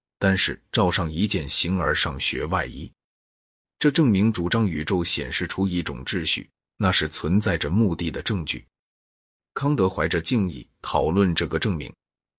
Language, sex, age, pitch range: Chinese, male, 30-49, 80-100 Hz